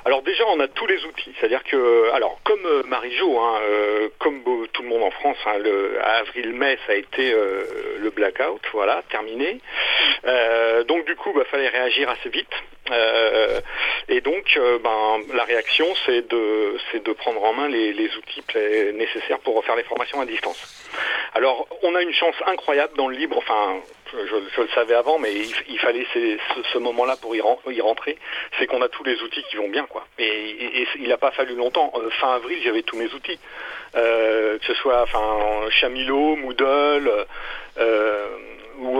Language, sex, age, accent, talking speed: French, male, 50-69, French, 190 wpm